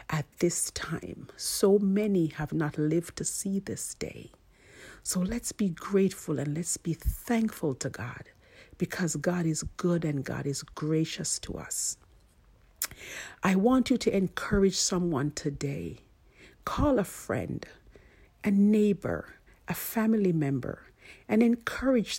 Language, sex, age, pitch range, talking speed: English, female, 50-69, 150-215 Hz, 135 wpm